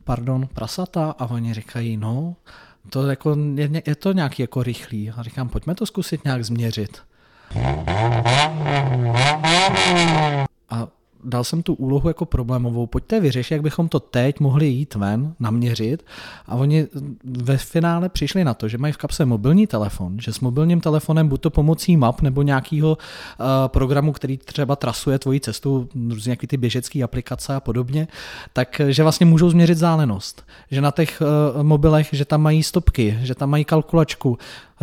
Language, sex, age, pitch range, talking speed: Czech, male, 40-59, 125-155 Hz, 155 wpm